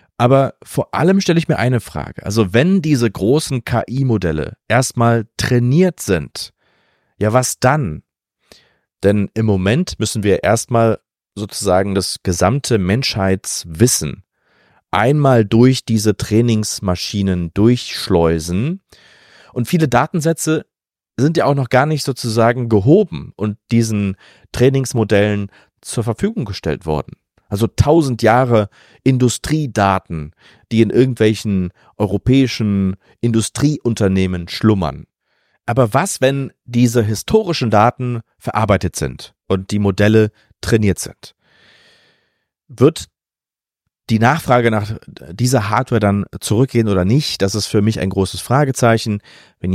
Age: 30-49